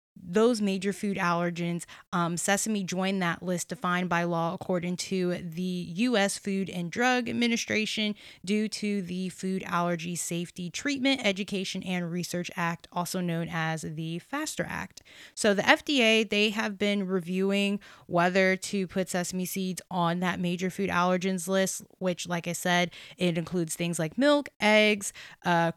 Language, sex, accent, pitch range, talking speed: English, female, American, 175-200 Hz, 155 wpm